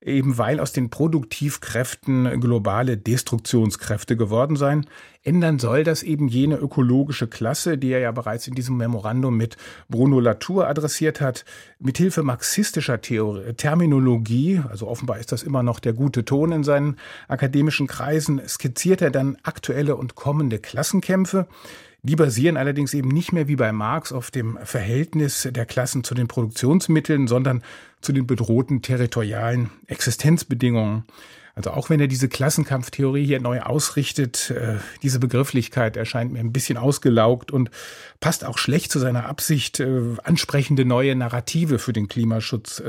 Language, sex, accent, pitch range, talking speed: German, male, German, 120-145 Hz, 145 wpm